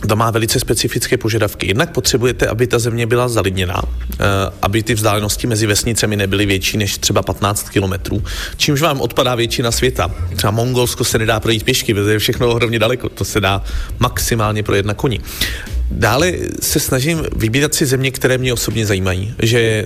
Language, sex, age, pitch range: Slovak, male, 30-49, 100-125 Hz